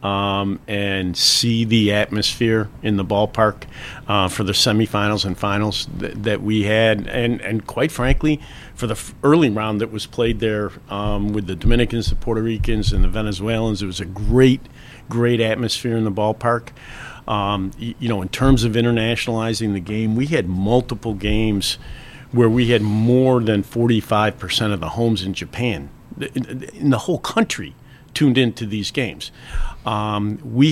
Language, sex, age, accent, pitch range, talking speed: English, male, 50-69, American, 105-125 Hz, 170 wpm